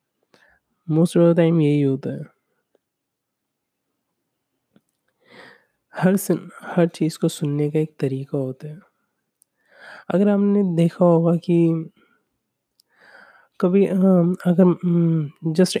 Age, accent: 20-39, native